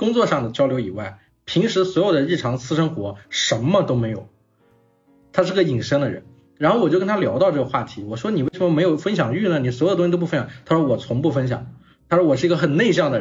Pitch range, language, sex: 125-185 Hz, Chinese, male